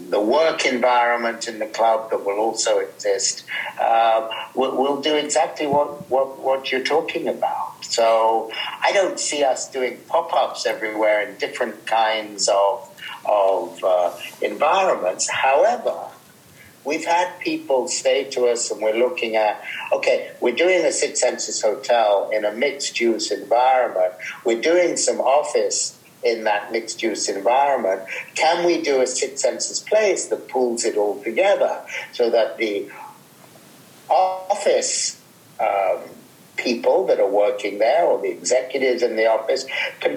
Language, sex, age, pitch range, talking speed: English, male, 60-79, 115-175 Hz, 140 wpm